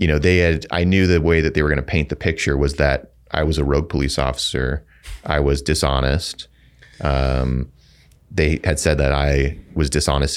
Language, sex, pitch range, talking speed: English, male, 70-80 Hz, 205 wpm